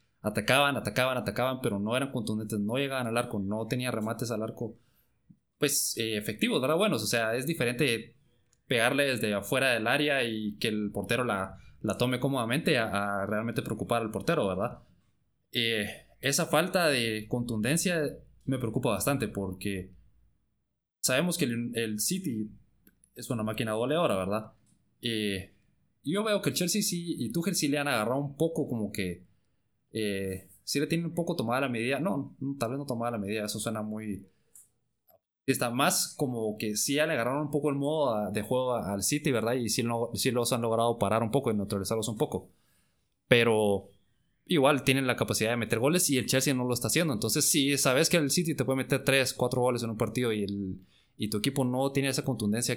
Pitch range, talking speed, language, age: 105-140 Hz, 200 wpm, Spanish, 20-39